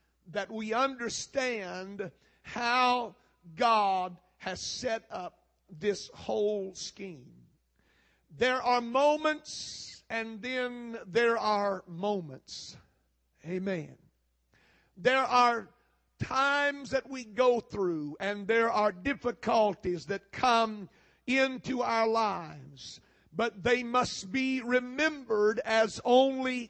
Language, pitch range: English, 195-240 Hz